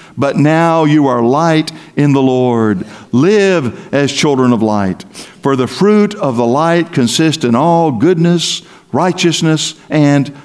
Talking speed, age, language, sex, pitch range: 145 wpm, 60-79, English, male, 135-180 Hz